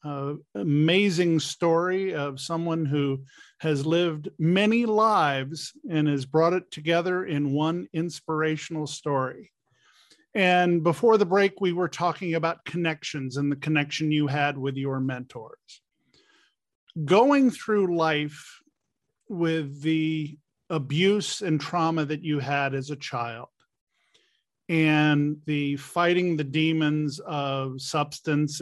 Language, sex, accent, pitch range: English, male, American, 145-175 Hz